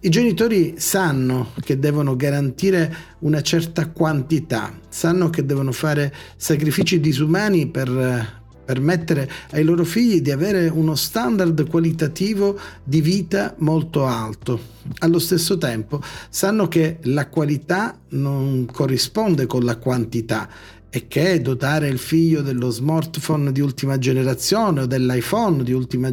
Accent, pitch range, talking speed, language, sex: native, 130-170 Hz, 125 wpm, Italian, male